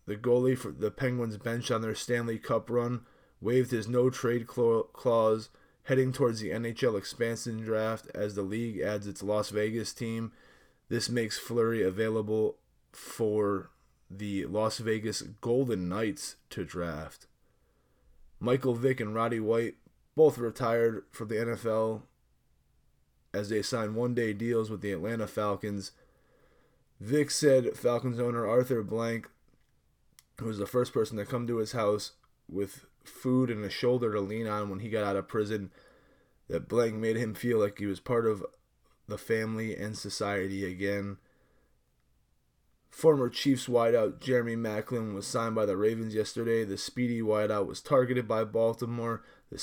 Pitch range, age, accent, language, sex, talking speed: 100-120 Hz, 20-39, American, English, male, 150 wpm